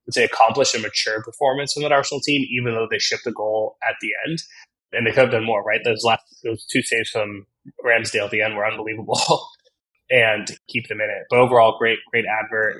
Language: English